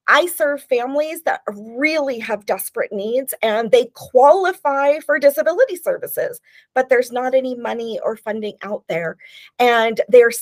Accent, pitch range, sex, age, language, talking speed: American, 215-305 Hz, female, 40-59, English, 145 wpm